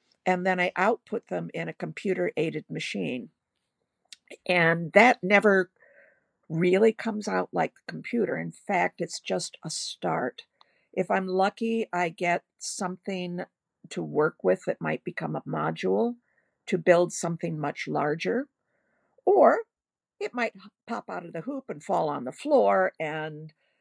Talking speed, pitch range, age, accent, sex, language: 145 wpm, 165-225 Hz, 50-69, American, female, English